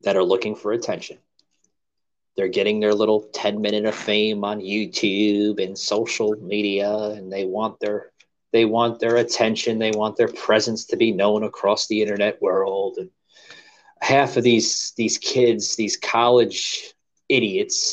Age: 30-49